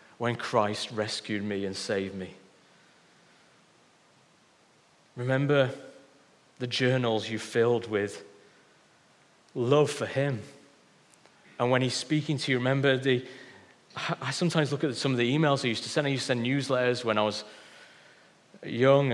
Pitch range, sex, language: 120-140 Hz, male, English